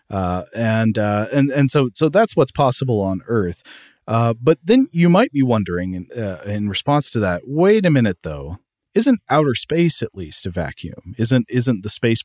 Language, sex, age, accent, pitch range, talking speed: English, male, 40-59, American, 100-130 Hz, 195 wpm